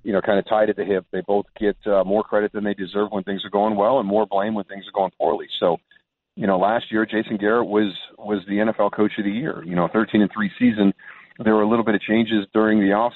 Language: English